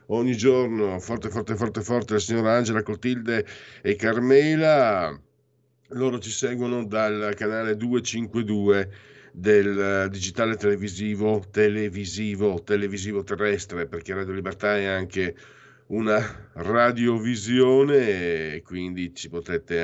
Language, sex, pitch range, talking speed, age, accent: Italian, male, 95-120 Hz, 105 wpm, 50-69, native